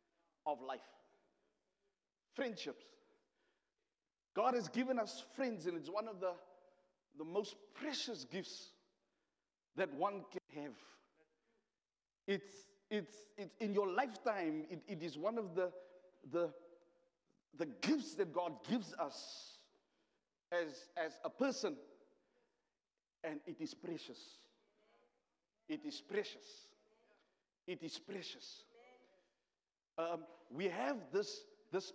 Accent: South African